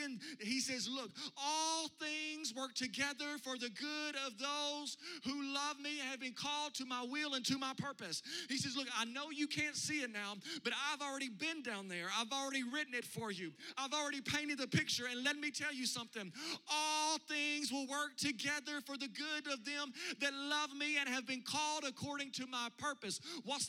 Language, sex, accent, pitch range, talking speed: English, male, American, 240-290 Hz, 205 wpm